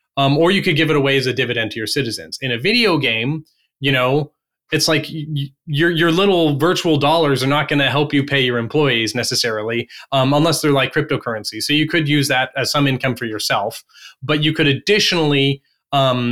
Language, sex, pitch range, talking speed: English, male, 125-150 Hz, 215 wpm